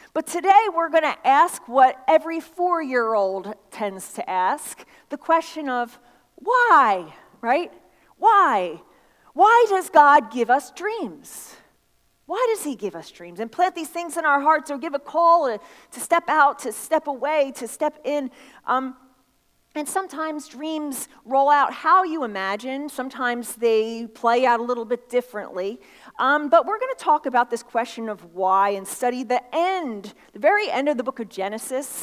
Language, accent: English, American